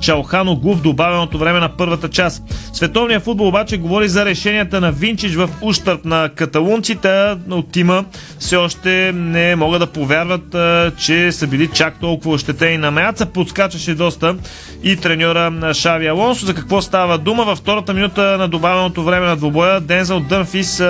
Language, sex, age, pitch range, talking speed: Bulgarian, male, 30-49, 165-190 Hz, 160 wpm